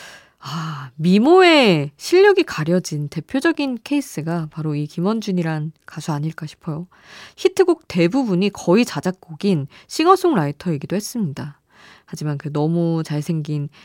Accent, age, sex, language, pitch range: native, 20-39, female, Korean, 155-225 Hz